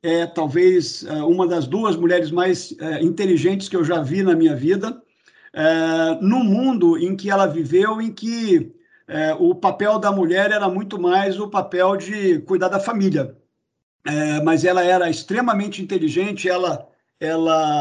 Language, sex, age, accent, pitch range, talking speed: Portuguese, male, 50-69, Brazilian, 170-210 Hz, 160 wpm